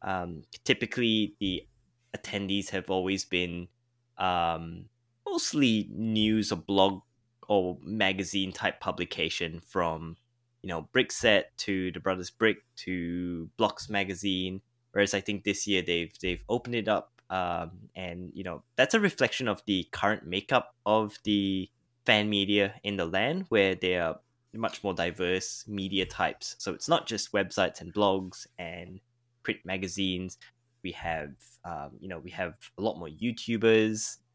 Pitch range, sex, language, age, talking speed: 90-110 Hz, male, English, 10-29, 145 wpm